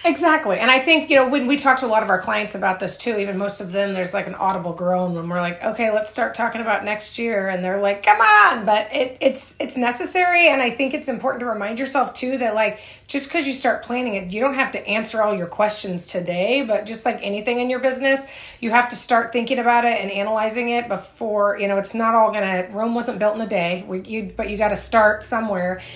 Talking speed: 260 wpm